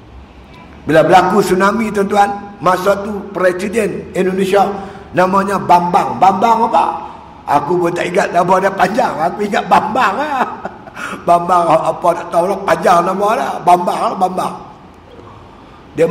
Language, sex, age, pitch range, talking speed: Malay, male, 50-69, 165-200 Hz, 135 wpm